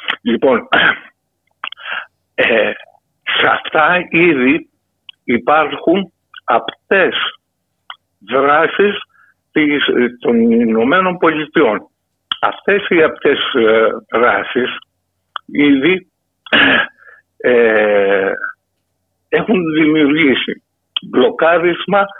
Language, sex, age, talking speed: Greek, male, 60-79, 60 wpm